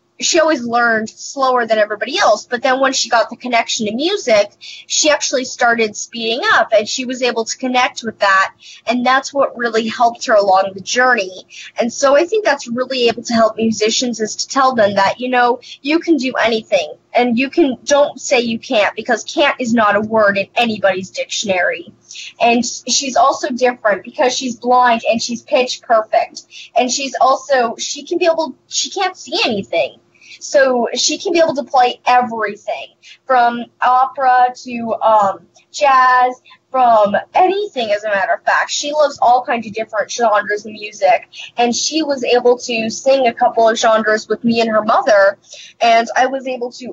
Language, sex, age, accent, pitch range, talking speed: English, female, 10-29, American, 225-280 Hz, 185 wpm